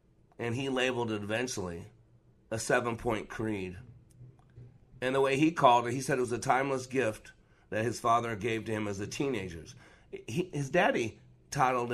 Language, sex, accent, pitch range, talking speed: English, male, American, 105-130 Hz, 165 wpm